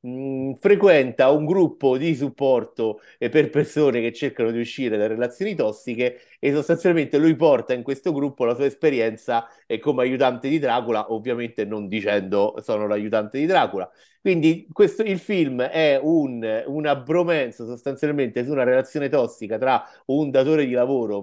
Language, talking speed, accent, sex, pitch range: Italian, 150 wpm, native, male, 110-145 Hz